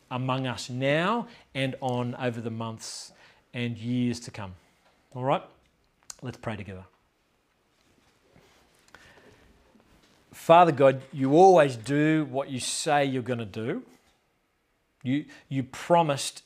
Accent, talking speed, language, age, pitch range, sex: Australian, 115 wpm, English, 40-59, 120-150 Hz, male